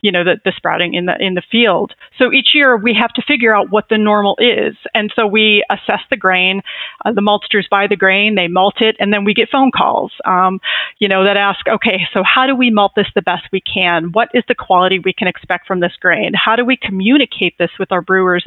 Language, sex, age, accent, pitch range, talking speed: English, female, 30-49, American, 185-225 Hz, 250 wpm